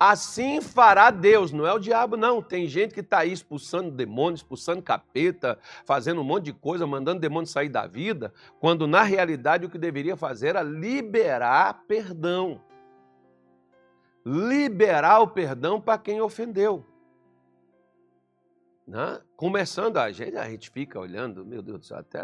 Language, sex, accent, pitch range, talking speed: Portuguese, male, Brazilian, 140-215 Hz, 150 wpm